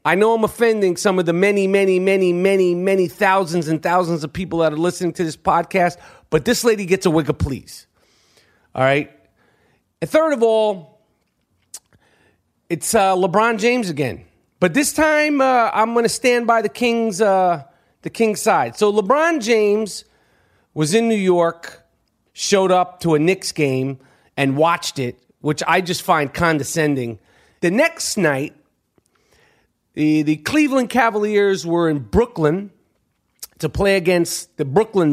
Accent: American